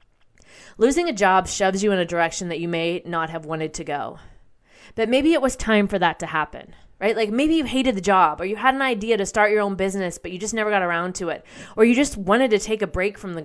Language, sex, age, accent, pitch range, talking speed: English, female, 20-39, American, 210-270 Hz, 270 wpm